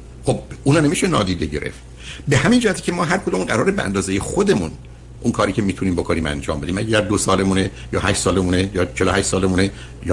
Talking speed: 200 wpm